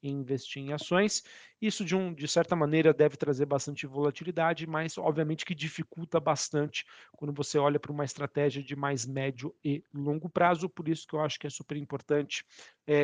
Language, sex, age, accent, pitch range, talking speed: Portuguese, male, 40-59, Brazilian, 135-160 Hz, 185 wpm